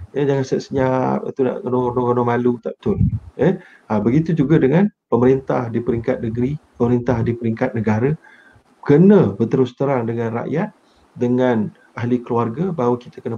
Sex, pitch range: male, 120-170 Hz